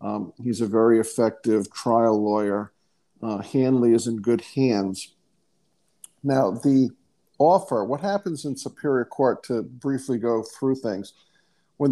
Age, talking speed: 50-69, 135 wpm